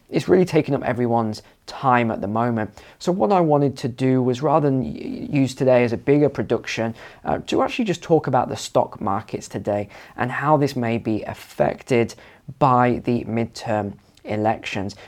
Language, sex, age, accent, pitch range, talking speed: English, male, 20-39, British, 115-150 Hz, 175 wpm